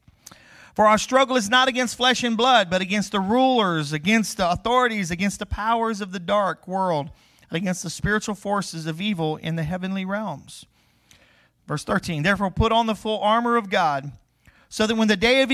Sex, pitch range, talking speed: male, 155-230 Hz, 190 wpm